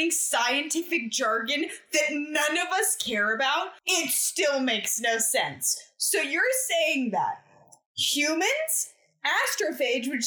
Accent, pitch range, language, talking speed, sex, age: American, 270-390 Hz, English, 115 wpm, female, 20-39